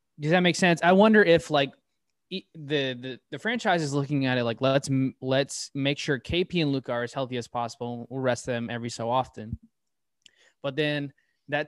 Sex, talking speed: male, 200 wpm